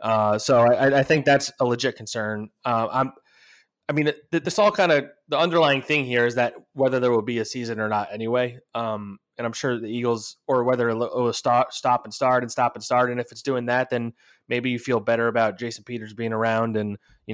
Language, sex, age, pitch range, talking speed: English, male, 20-39, 105-130 Hz, 230 wpm